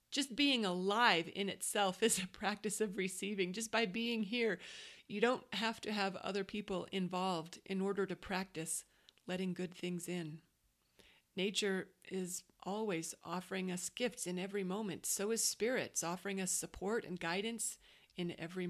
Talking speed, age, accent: 155 wpm, 40-59, American